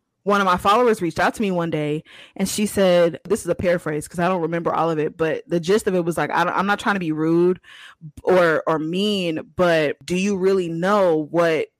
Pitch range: 170-205 Hz